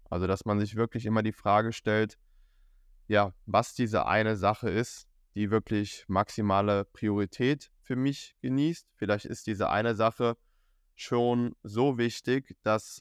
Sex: male